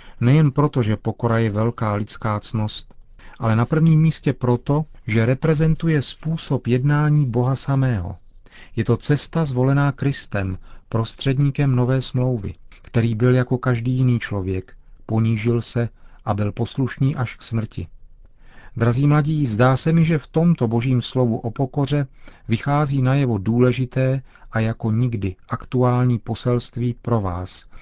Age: 40-59